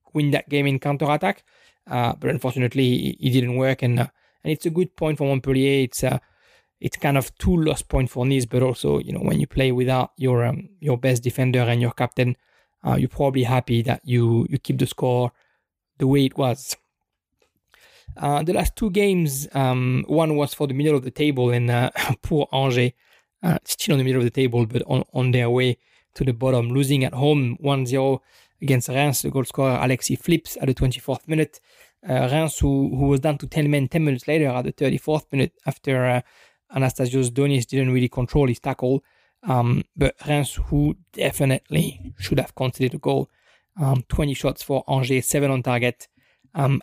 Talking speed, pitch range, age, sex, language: 200 wpm, 125-145 Hz, 20-39, male, English